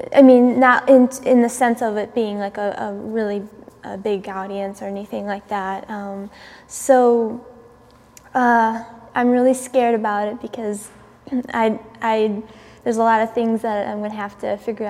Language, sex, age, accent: English, female, 10-29, American